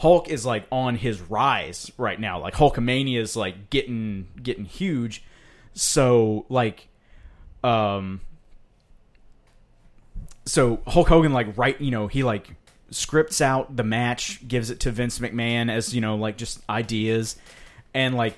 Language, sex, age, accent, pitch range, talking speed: English, male, 30-49, American, 110-135 Hz, 145 wpm